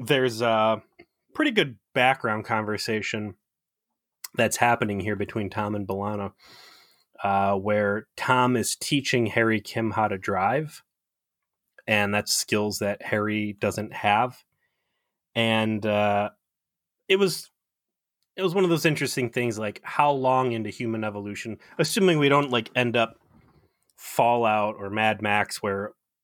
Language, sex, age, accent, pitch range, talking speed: English, male, 30-49, American, 105-125 Hz, 135 wpm